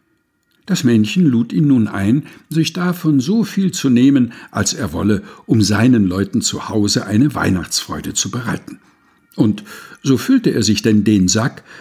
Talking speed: 165 wpm